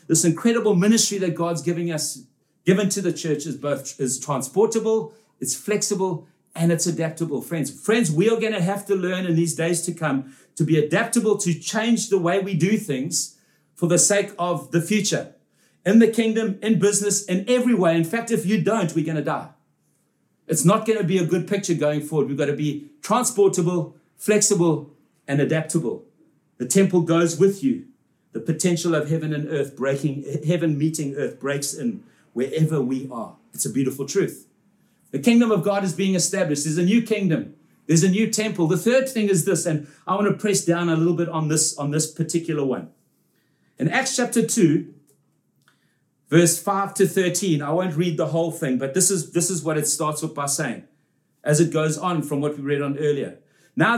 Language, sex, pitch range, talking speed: English, male, 155-200 Hz, 195 wpm